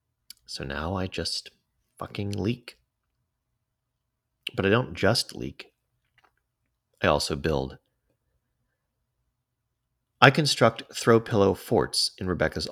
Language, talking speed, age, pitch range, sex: English, 100 wpm, 30-49, 80-125 Hz, male